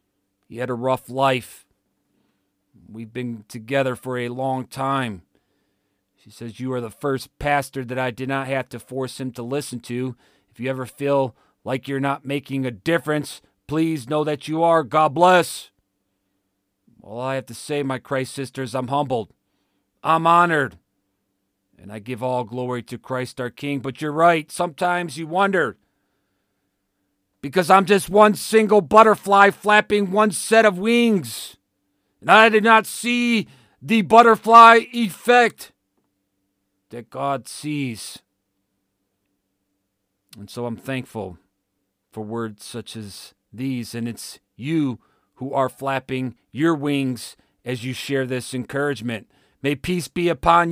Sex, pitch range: male, 100-150 Hz